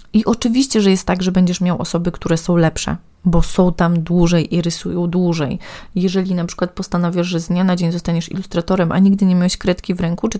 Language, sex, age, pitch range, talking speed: Polish, female, 30-49, 175-210 Hz, 220 wpm